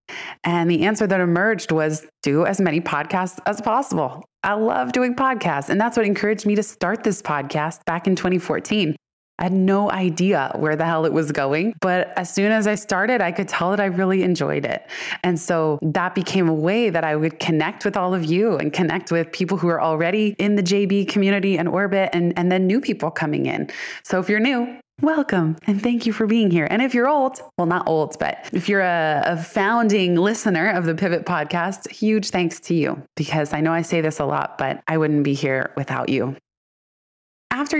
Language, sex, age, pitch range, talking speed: English, female, 20-39, 160-205 Hz, 215 wpm